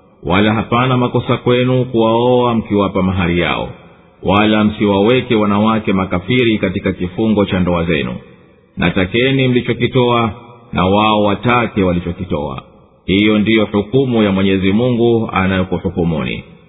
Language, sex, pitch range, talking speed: Swahili, male, 100-125 Hz, 110 wpm